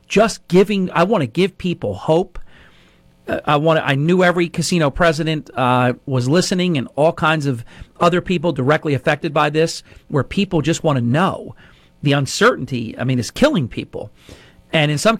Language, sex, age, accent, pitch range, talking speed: English, male, 40-59, American, 140-170 Hz, 180 wpm